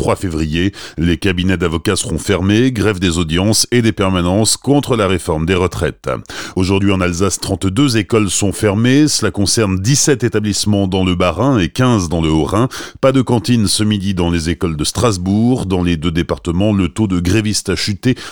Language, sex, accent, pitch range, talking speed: French, male, French, 90-115 Hz, 185 wpm